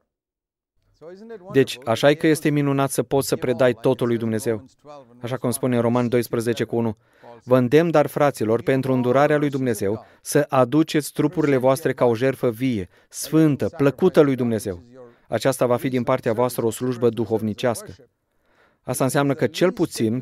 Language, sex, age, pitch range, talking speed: Romanian, male, 30-49, 115-145 Hz, 155 wpm